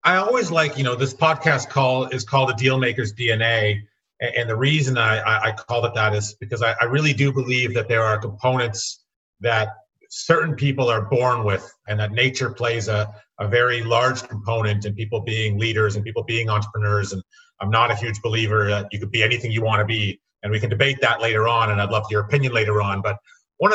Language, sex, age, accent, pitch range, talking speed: English, male, 30-49, American, 110-135 Hz, 215 wpm